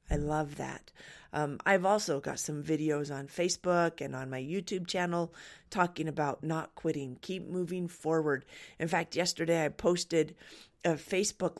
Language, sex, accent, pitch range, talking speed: English, female, American, 160-225 Hz, 155 wpm